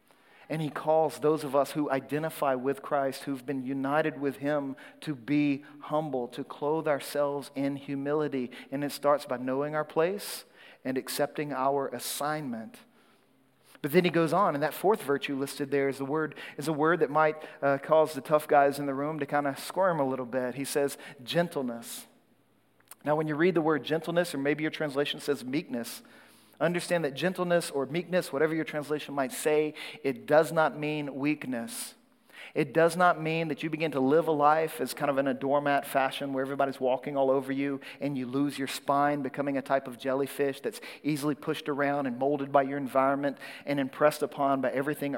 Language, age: English, 40-59